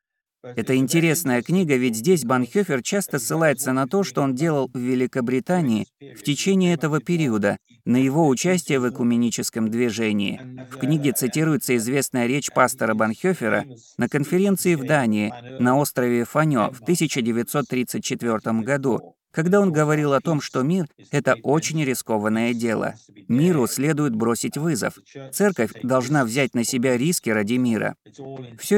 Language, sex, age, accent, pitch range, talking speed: Russian, male, 30-49, native, 115-150 Hz, 140 wpm